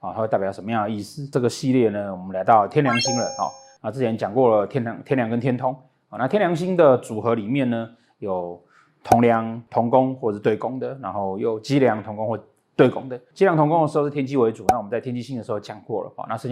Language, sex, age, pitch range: Chinese, male, 30-49, 115-145 Hz